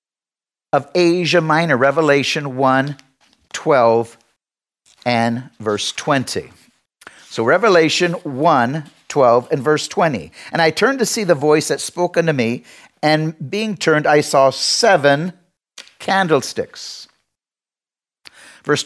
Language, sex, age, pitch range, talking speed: English, male, 50-69, 140-195 Hz, 110 wpm